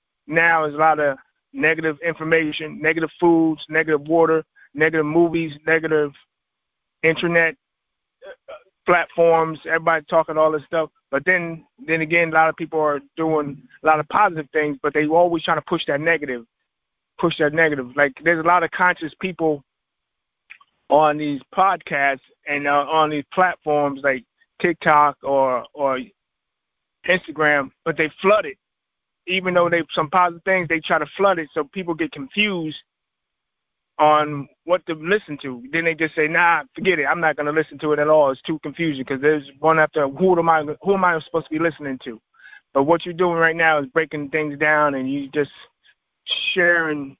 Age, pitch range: 30-49, 145-170 Hz